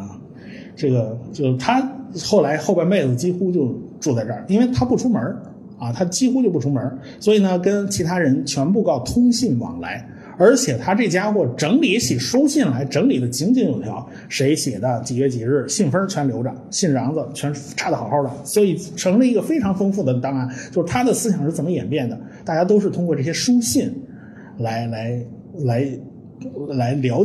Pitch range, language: 125-175 Hz, Chinese